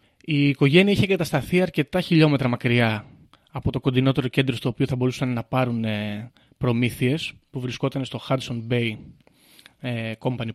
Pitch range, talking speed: 125-155 Hz, 135 wpm